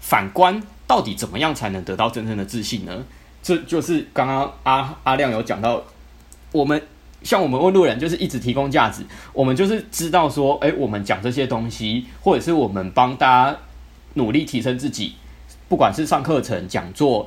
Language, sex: Chinese, male